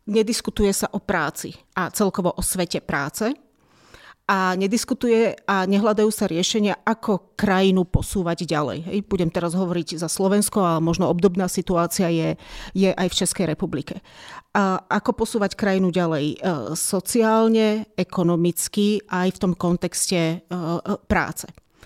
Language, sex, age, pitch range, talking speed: Slovak, female, 40-59, 175-210 Hz, 125 wpm